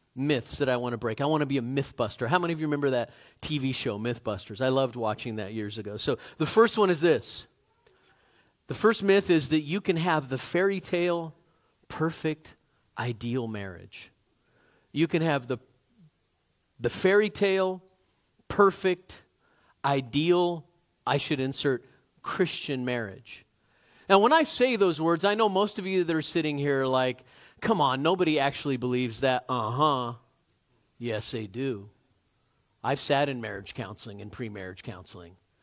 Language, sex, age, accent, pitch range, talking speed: English, male, 40-59, American, 125-175 Hz, 165 wpm